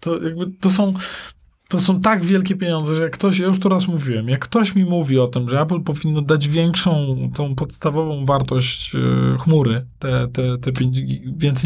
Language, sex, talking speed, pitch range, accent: Polish, male, 195 wpm, 140-185 Hz, native